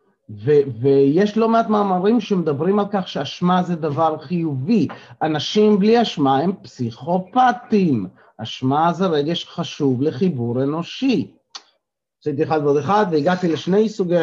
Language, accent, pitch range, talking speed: Hebrew, native, 150-200 Hz, 125 wpm